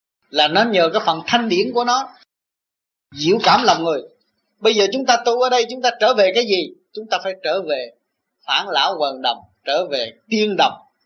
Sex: male